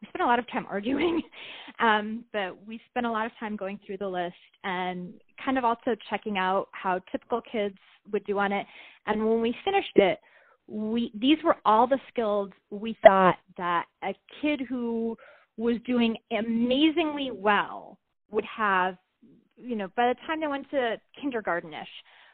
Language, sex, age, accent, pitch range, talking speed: English, female, 20-39, American, 195-255 Hz, 170 wpm